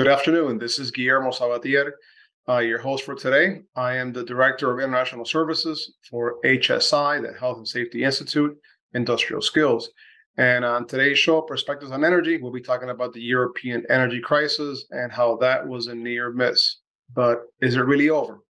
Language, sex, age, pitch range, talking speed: English, male, 30-49, 120-135 Hz, 175 wpm